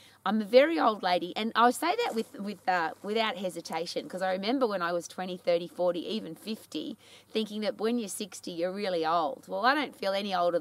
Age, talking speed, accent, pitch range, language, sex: 20-39, 220 wpm, Australian, 185-250 Hz, English, female